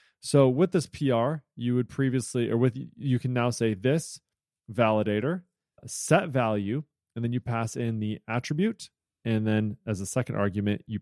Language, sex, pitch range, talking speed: English, male, 110-130 Hz, 170 wpm